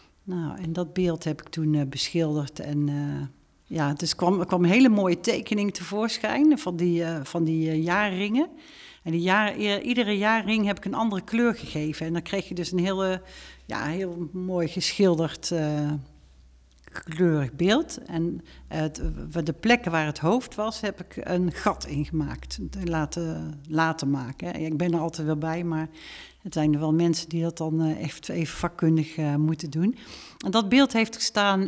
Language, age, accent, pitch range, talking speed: Dutch, 60-79, Dutch, 160-195 Hz, 170 wpm